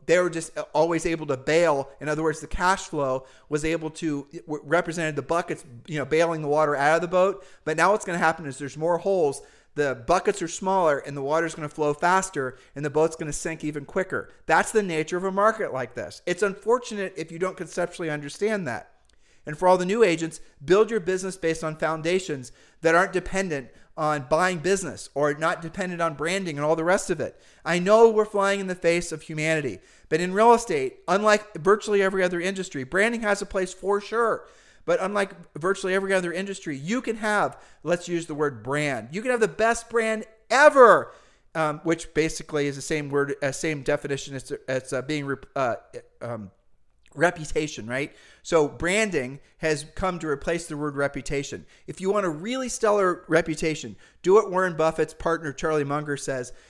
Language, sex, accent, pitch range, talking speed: English, male, American, 150-195 Hz, 200 wpm